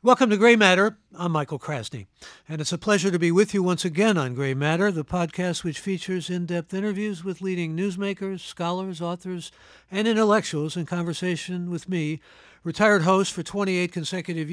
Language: English